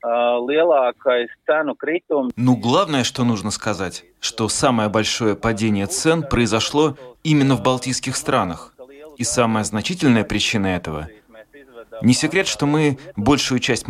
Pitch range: 110-130 Hz